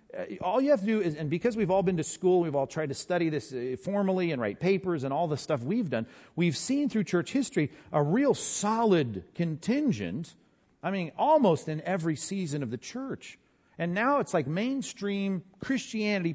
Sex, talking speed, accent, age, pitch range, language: male, 195 wpm, American, 40-59, 130-190 Hz, English